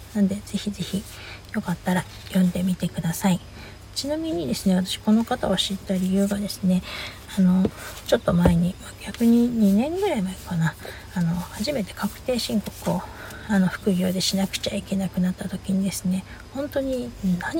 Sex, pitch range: female, 180-210 Hz